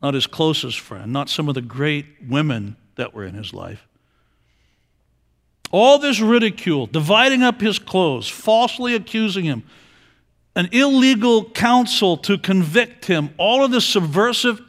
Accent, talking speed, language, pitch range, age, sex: American, 145 wpm, English, 160-220 Hz, 50-69, male